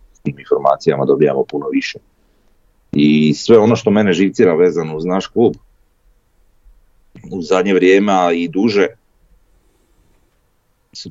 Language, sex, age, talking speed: Croatian, male, 30-49, 110 wpm